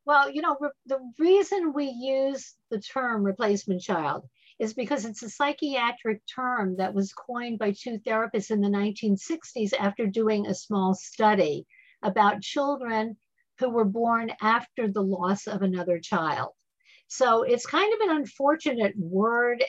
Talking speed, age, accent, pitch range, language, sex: 150 wpm, 60-79, American, 205-270 Hz, English, female